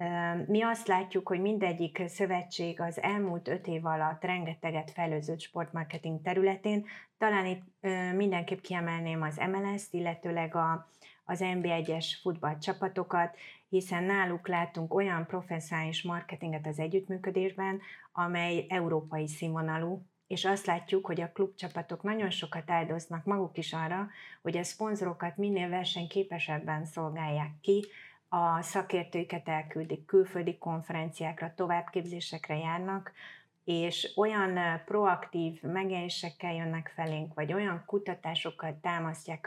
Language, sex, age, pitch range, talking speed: Hungarian, female, 30-49, 165-190 Hz, 110 wpm